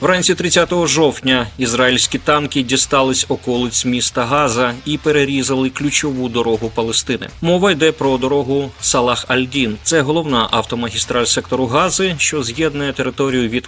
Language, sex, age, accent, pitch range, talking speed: Ukrainian, male, 20-39, native, 120-150 Hz, 125 wpm